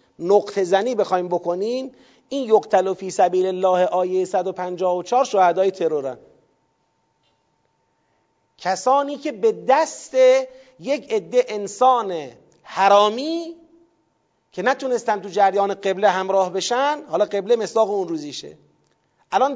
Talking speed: 105 wpm